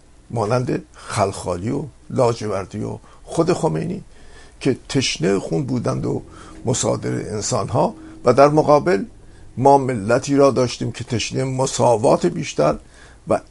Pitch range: 95-135 Hz